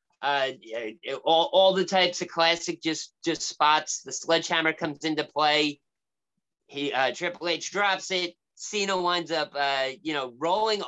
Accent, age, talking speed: American, 30-49, 155 wpm